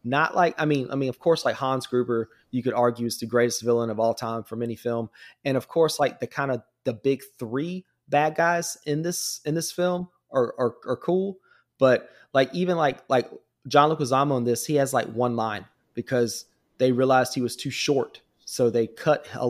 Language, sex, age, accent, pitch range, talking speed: English, male, 20-39, American, 120-140 Hz, 220 wpm